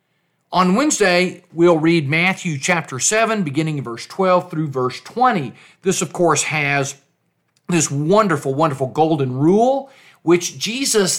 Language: English